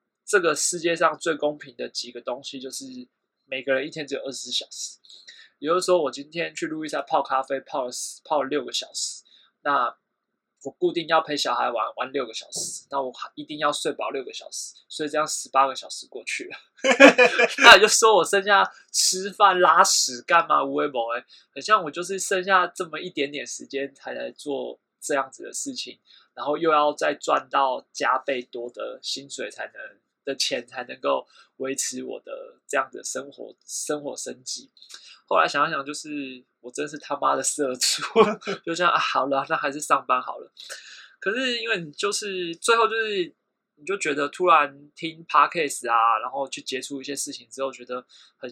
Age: 20-39